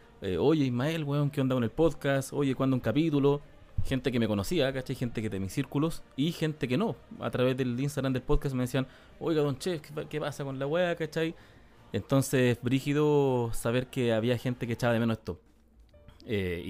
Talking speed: 205 wpm